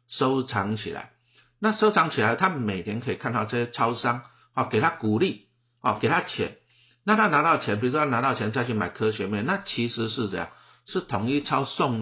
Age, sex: 50-69, male